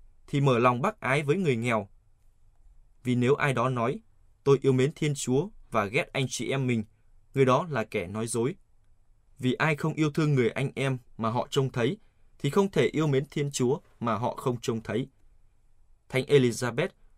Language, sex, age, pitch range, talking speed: Vietnamese, male, 20-39, 110-140 Hz, 195 wpm